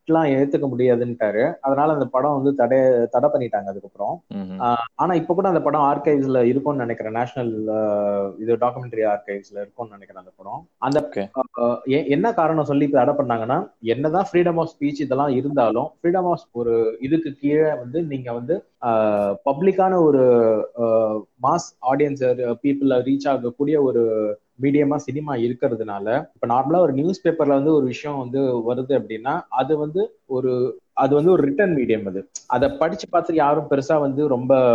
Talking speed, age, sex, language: 85 wpm, 20-39, male, Tamil